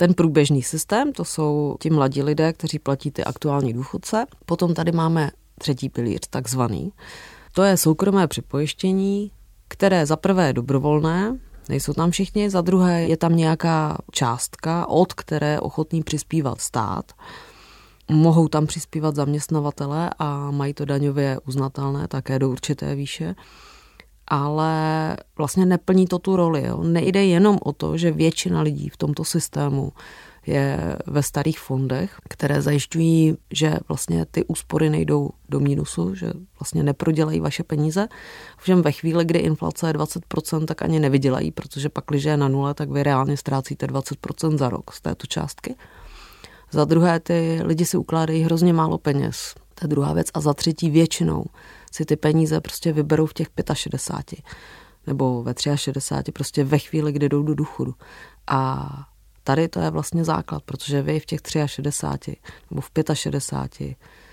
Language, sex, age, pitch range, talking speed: Czech, female, 30-49, 140-165 Hz, 150 wpm